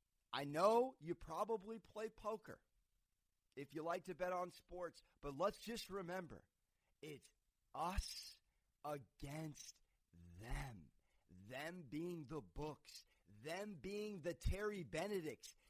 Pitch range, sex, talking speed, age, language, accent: 150-245 Hz, male, 115 wpm, 40-59, English, American